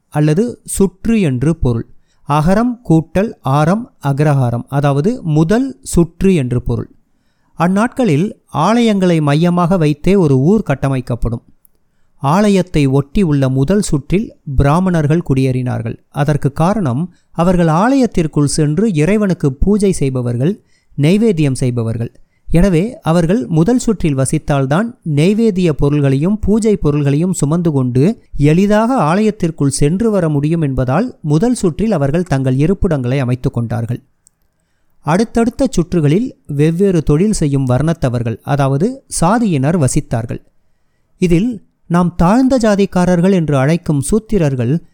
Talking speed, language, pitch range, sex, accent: 100 wpm, Tamil, 140-200 Hz, male, native